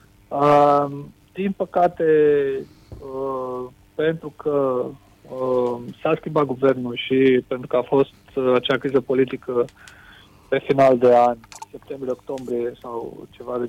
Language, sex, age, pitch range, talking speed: Romanian, male, 30-49, 125-150 Hz, 120 wpm